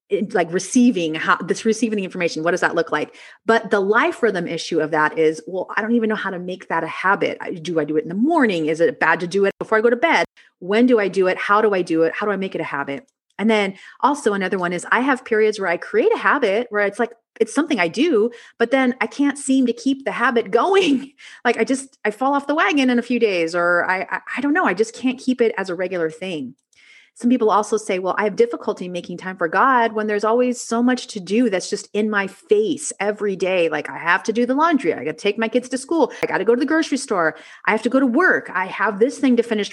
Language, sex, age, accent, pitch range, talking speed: English, female, 30-49, American, 180-250 Hz, 280 wpm